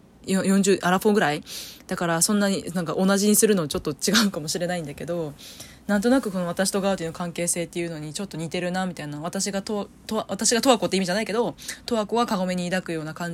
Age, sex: 20-39, female